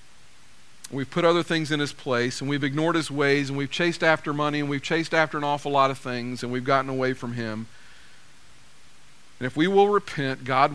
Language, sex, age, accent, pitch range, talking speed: English, male, 50-69, American, 125-155 Hz, 210 wpm